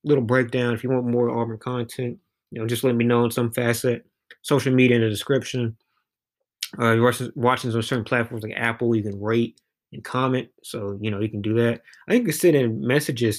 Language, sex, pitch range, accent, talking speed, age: English, male, 110-130 Hz, American, 220 wpm, 20-39